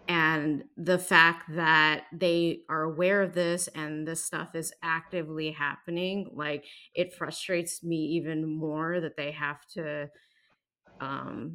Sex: female